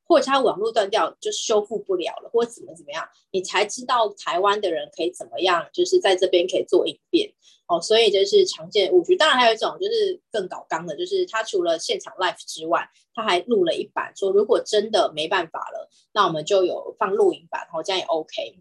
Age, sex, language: 20-39, female, Chinese